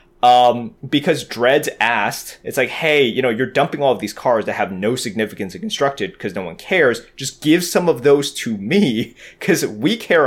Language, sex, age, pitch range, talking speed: English, male, 20-39, 125-185 Hz, 205 wpm